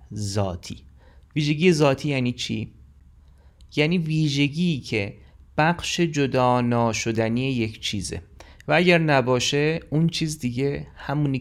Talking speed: 105 wpm